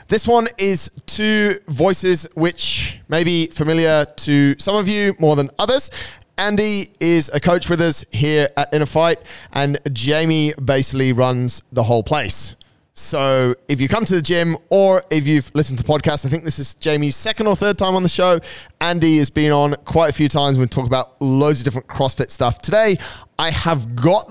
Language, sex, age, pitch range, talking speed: English, male, 20-39, 125-165 Hz, 195 wpm